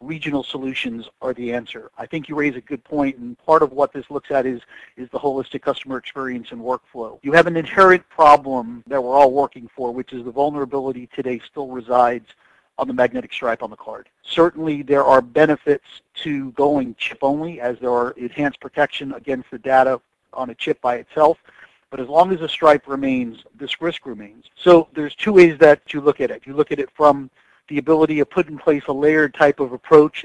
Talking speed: 210 wpm